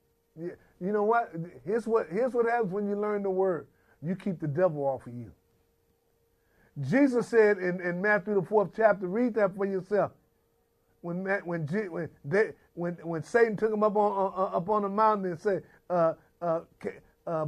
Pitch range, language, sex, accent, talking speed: 175-230 Hz, English, male, American, 180 wpm